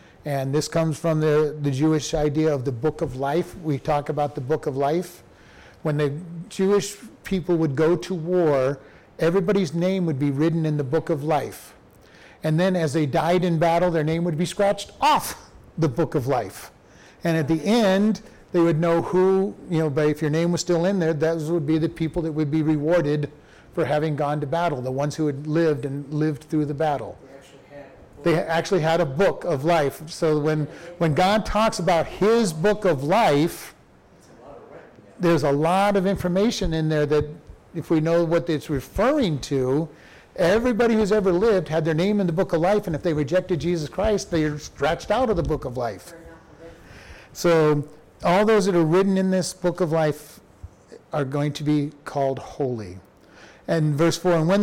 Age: 40-59